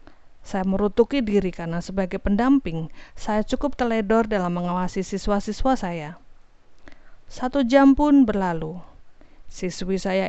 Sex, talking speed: female, 110 wpm